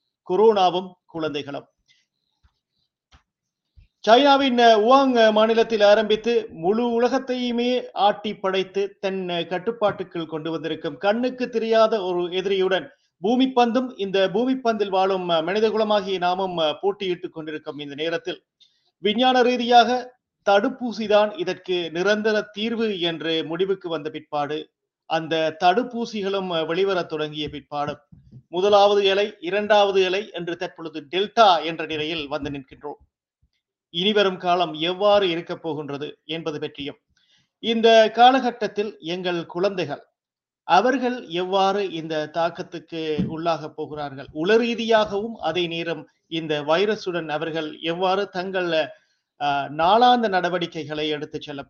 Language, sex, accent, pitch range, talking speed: Tamil, male, native, 160-220 Hz, 95 wpm